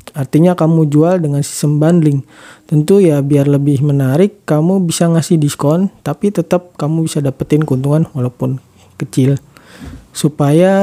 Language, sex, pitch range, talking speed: Indonesian, male, 145-175 Hz, 135 wpm